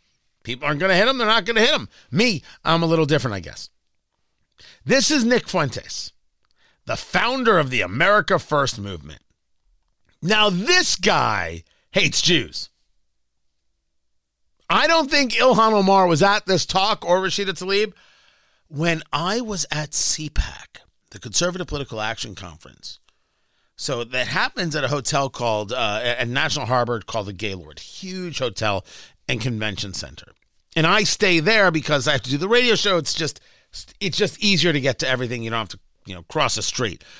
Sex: male